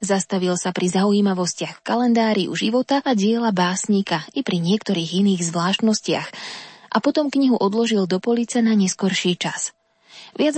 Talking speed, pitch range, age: 140 wpm, 190-235 Hz, 20-39